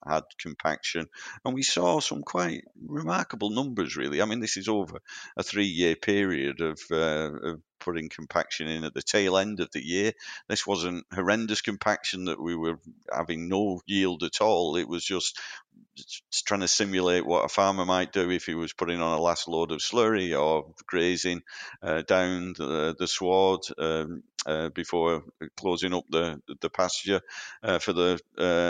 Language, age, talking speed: English, 50-69, 175 wpm